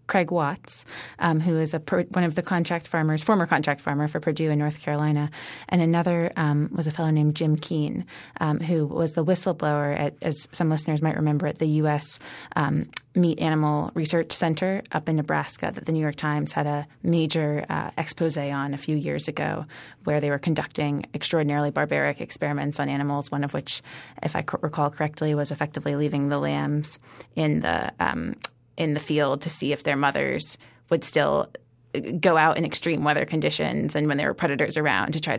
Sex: female